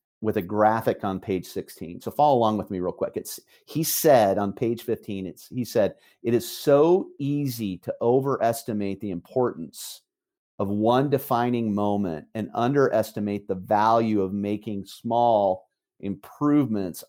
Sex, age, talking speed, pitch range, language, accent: male, 40-59, 150 wpm, 105-125 Hz, English, American